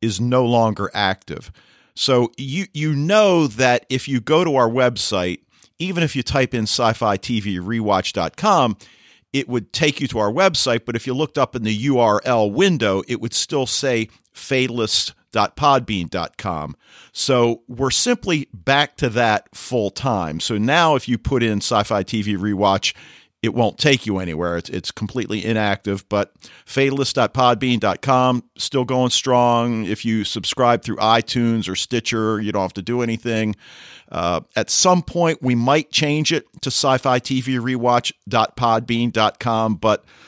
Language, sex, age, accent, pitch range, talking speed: English, male, 50-69, American, 110-135 Hz, 150 wpm